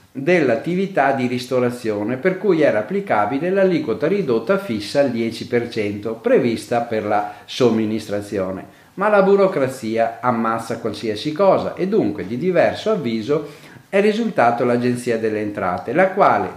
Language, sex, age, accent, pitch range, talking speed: Italian, male, 50-69, native, 110-165 Hz, 125 wpm